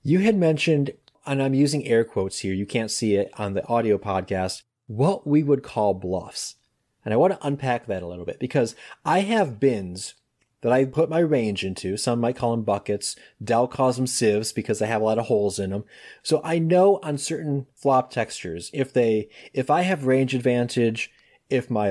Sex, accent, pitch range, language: male, American, 110-150 Hz, English